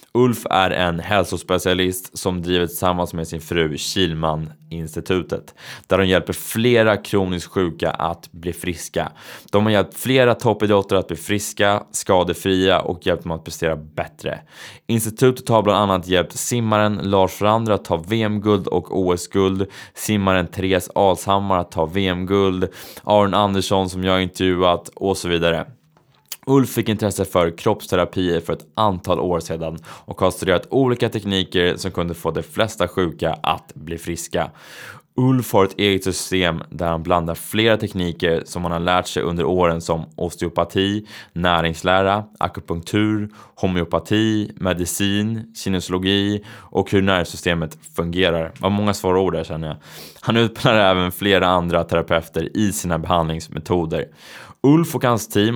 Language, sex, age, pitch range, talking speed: Swedish, male, 20-39, 85-105 Hz, 145 wpm